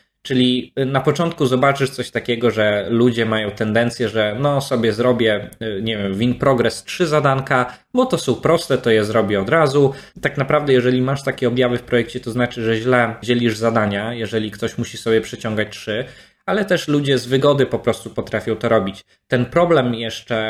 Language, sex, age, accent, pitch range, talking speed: Polish, male, 20-39, native, 115-135 Hz, 180 wpm